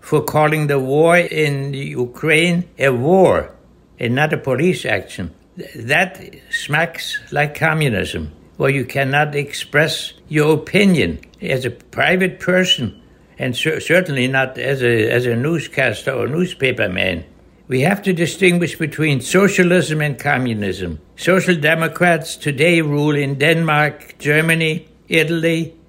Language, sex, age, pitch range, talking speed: English, male, 60-79, 135-165 Hz, 125 wpm